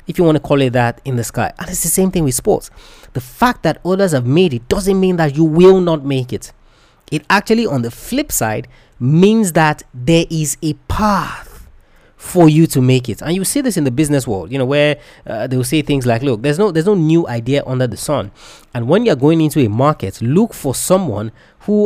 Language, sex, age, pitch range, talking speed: English, male, 30-49, 130-175 Hz, 235 wpm